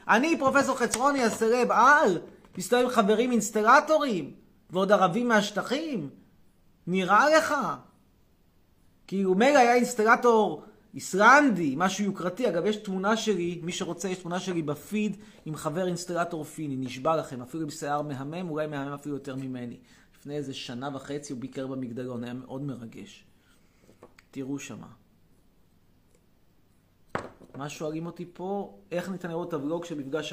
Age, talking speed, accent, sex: 30-49, 135 wpm, native, male